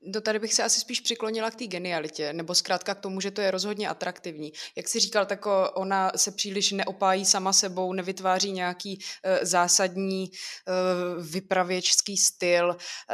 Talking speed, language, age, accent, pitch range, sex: 160 wpm, Czech, 20-39, native, 180-205 Hz, female